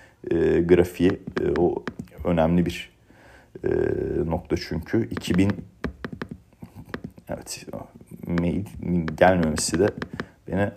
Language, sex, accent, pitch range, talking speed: Turkish, male, native, 80-100 Hz, 80 wpm